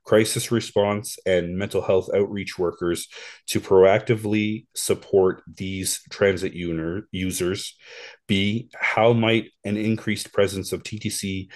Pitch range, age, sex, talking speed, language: 95-110 Hz, 30-49, male, 110 wpm, English